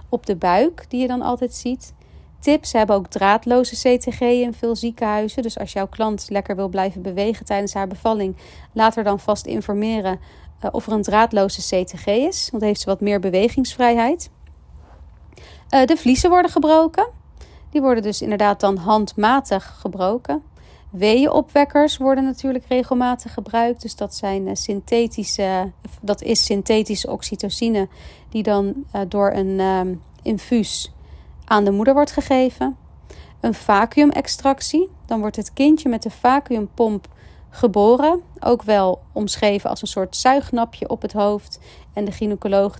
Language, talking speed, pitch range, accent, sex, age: Dutch, 145 wpm, 195-250 Hz, Dutch, female, 40-59